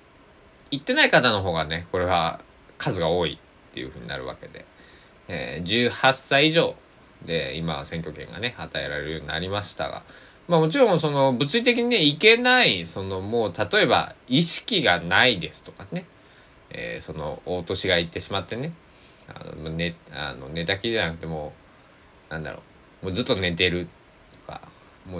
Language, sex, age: Japanese, male, 20-39